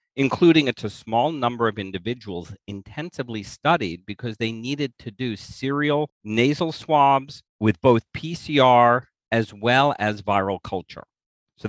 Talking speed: 135 wpm